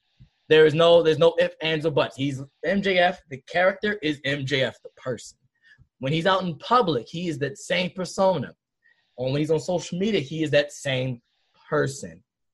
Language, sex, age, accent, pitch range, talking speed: English, male, 20-39, American, 145-210 Hz, 175 wpm